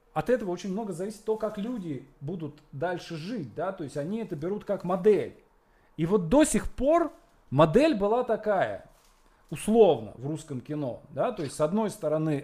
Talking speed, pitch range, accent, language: 175 wpm, 145-210 Hz, native, Russian